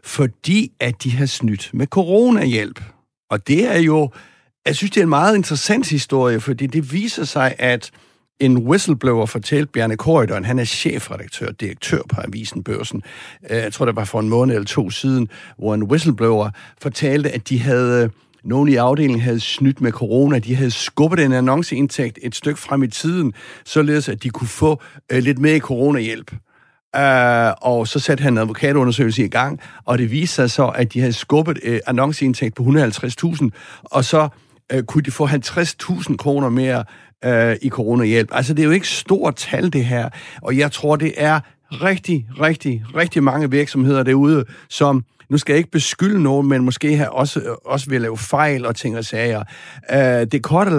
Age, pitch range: 60-79, 120-150 Hz